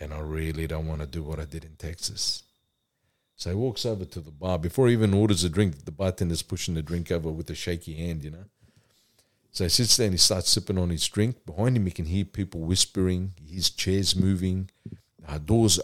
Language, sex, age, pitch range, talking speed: English, male, 50-69, 90-115 Hz, 225 wpm